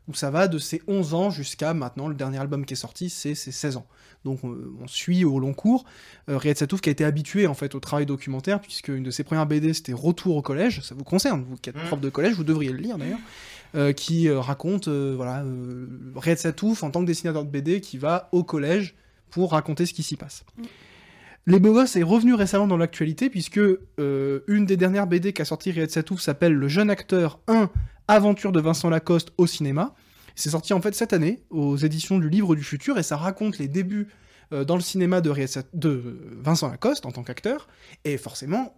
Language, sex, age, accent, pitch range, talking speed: French, male, 20-39, French, 140-185 Hz, 220 wpm